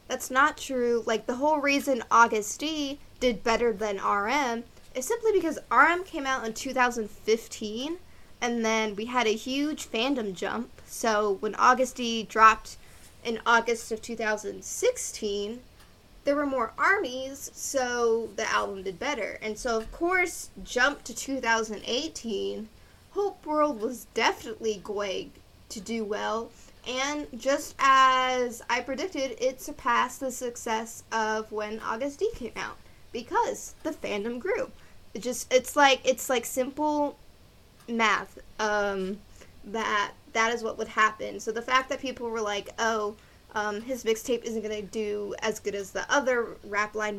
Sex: female